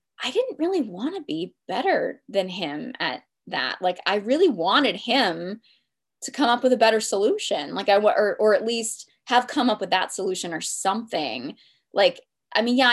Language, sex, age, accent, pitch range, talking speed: English, female, 20-39, American, 180-235 Hz, 190 wpm